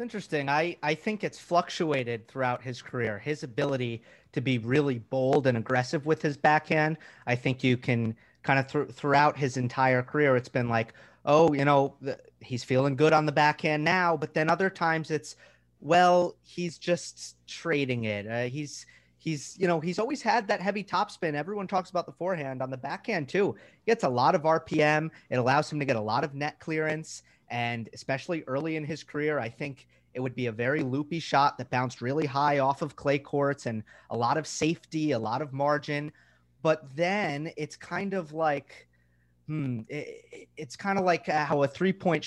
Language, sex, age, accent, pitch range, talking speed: English, male, 30-49, American, 125-165 Hz, 195 wpm